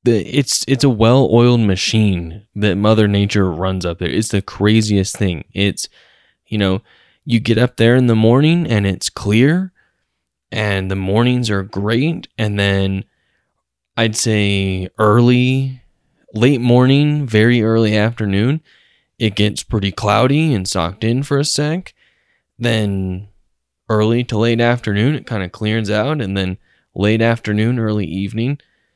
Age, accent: 10-29, American